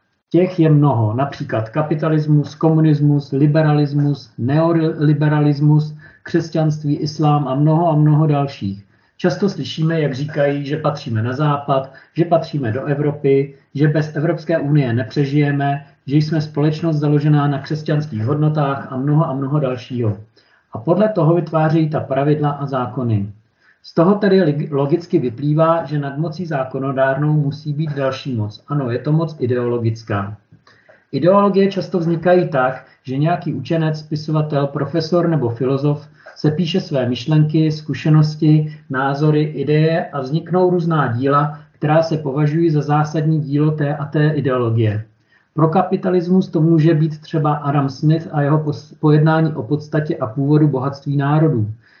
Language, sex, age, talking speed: Czech, male, 40-59, 135 wpm